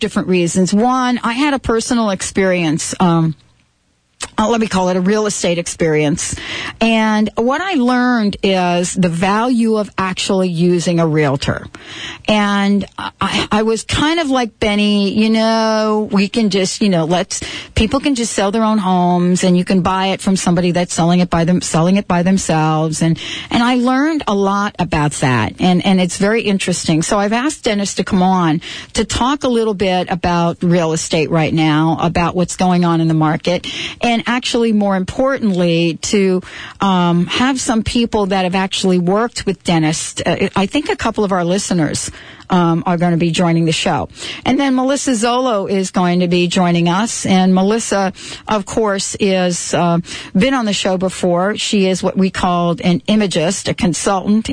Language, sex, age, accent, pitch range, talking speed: English, female, 40-59, American, 175-220 Hz, 185 wpm